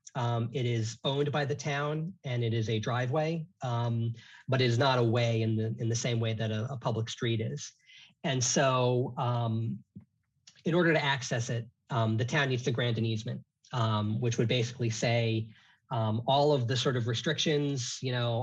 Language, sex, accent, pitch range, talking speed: English, male, American, 115-135 Hz, 200 wpm